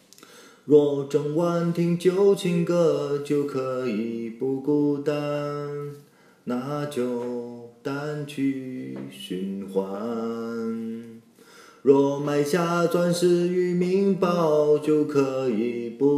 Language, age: Chinese, 30-49